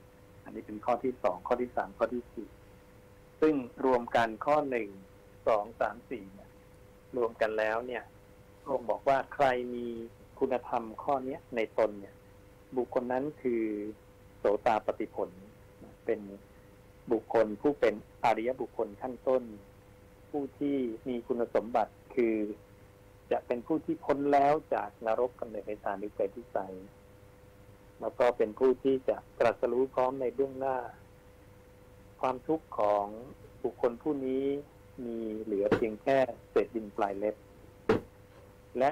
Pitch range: 100-125 Hz